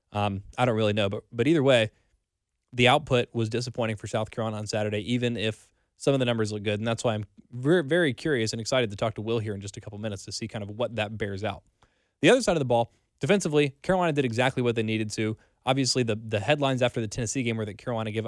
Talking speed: 260 wpm